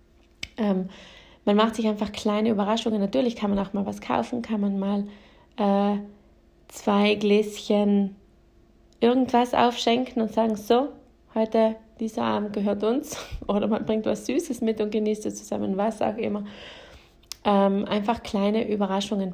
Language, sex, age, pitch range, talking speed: German, female, 20-39, 200-225 Hz, 145 wpm